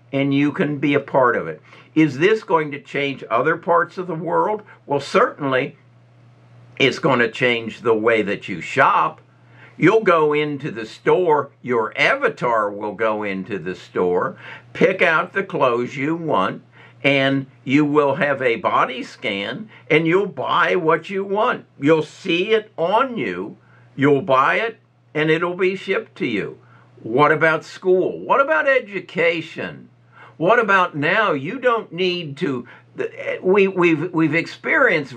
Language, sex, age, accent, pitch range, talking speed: English, male, 60-79, American, 120-165 Hz, 155 wpm